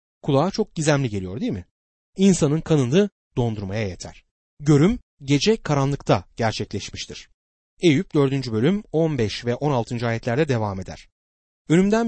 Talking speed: 120 wpm